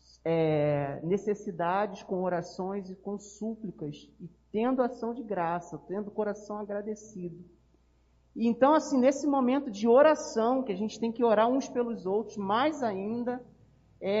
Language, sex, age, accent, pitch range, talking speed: Portuguese, male, 40-59, Brazilian, 195-255 Hz, 150 wpm